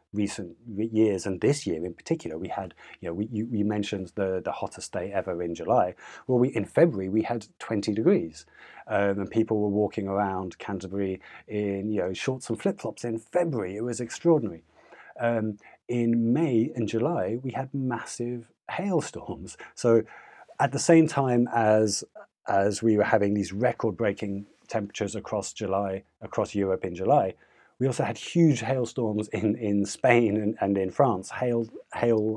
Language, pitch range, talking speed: English, 100-120 Hz, 165 wpm